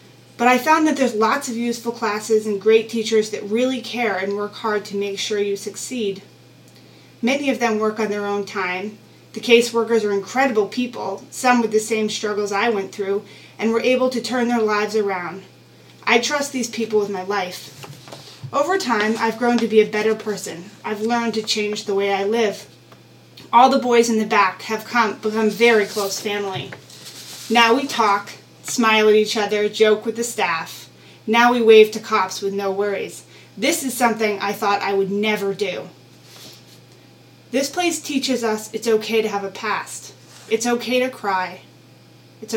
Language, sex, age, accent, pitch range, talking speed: English, female, 30-49, American, 205-230 Hz, 185 wpm